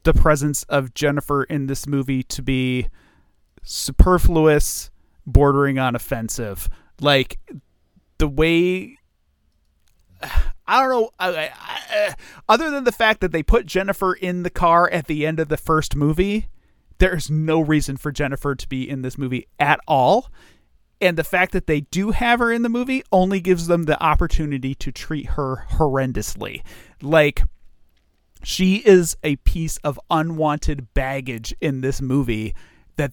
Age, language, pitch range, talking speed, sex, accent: 30-49, English, 125-165 Hz, 145 wpm, male, American